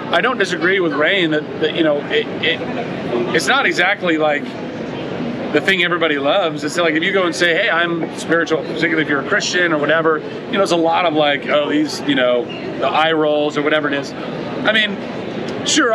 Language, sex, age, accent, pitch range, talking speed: English, male, 30-49, American, 150-175 Hz, 215 wpm